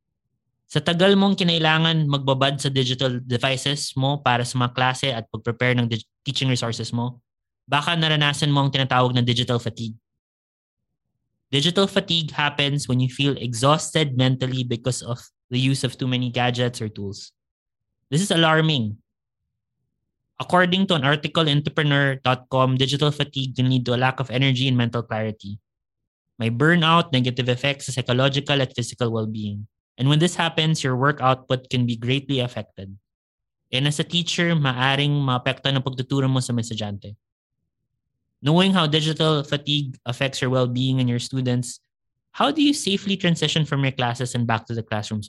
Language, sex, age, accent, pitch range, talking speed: English, male, 20-39, Filipino, 115-140 Hz, 160 wpm